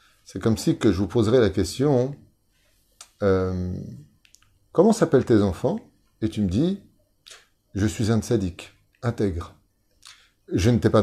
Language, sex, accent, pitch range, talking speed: French, male, French, 100-120 Hz, 165 wpm